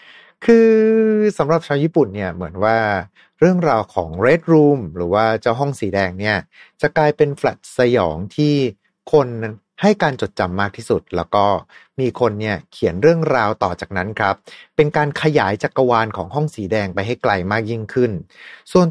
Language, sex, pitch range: Thai, male, 100-155 Hz